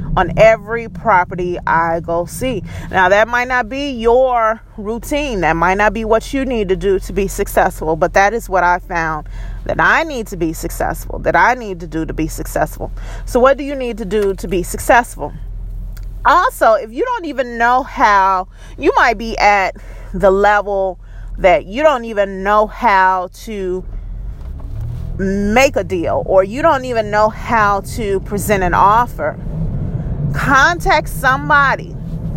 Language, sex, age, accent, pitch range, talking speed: English, female, 30-49, American, 165-220 Hz, 165 wpm